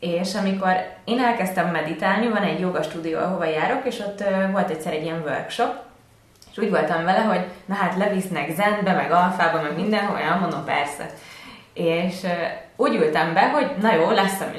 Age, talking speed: 20-39, 175 wpm